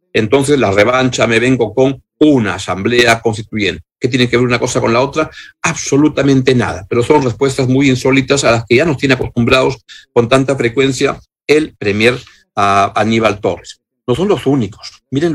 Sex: male